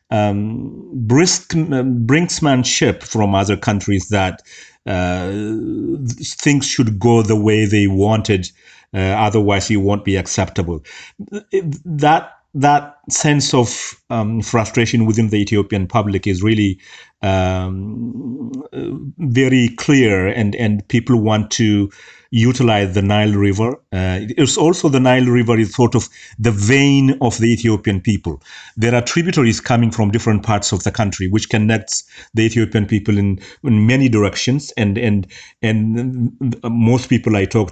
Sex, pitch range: male, 105-130 Hz